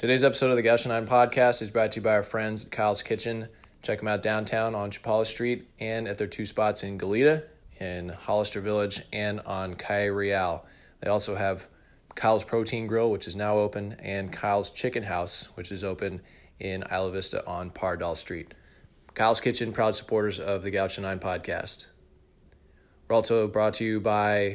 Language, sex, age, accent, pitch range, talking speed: English, male, 20-39, American, 95-110 Hz, 185 wpm